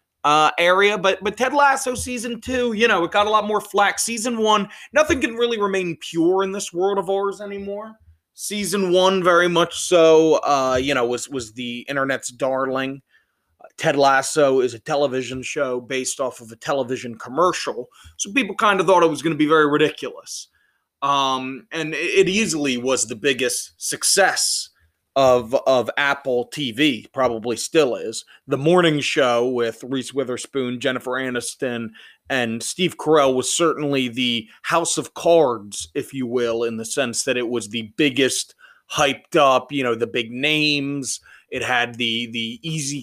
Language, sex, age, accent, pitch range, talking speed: English, male, 30-49, American, 125-180 Hz, 170 wpm